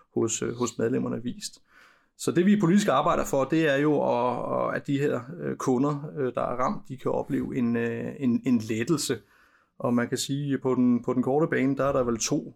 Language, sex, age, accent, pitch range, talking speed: Danish, male, 30-49, native, 120-145 Hz, 190 wpm